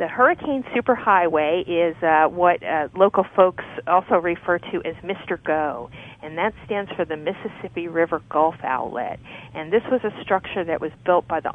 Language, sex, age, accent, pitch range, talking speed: English, female, 40-59, American, 155-190 Hz, 175 wpm